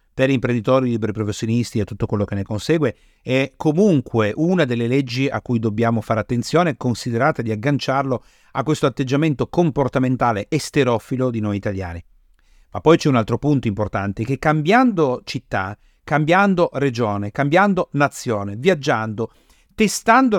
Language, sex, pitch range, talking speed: Italian, male, 115-165 Hz, 140 wpm